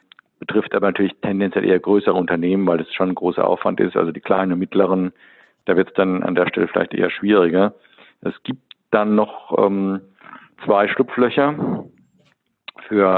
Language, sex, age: German, male, 50-69